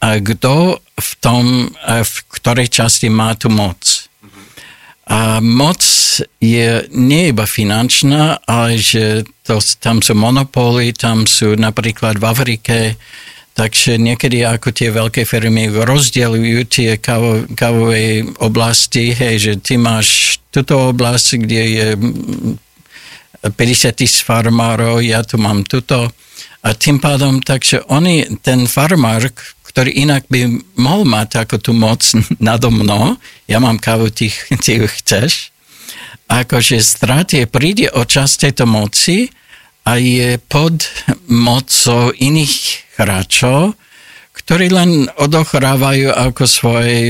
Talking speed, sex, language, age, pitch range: 120 wpm, male, Slovak, 60-79, 115-135 Hz